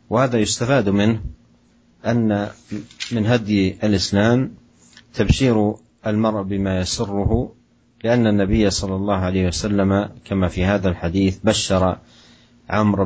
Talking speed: 105 wpm